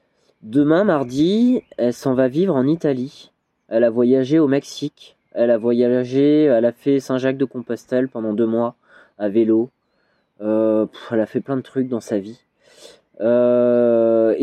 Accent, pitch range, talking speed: French, 115-145 Hz, 160 wpm